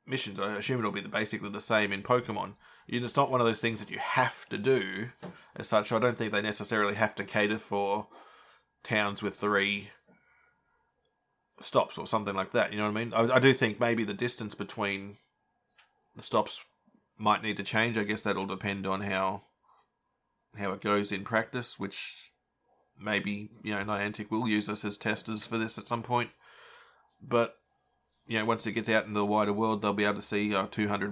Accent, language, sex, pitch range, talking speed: Australian, English, male, 105-115 Hz, 200 wpm